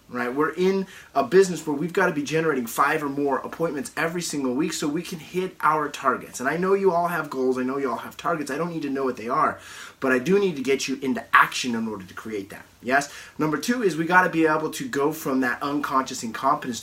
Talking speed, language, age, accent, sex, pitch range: 265 wpm, English, 30-49, American, male, 130-180 Hz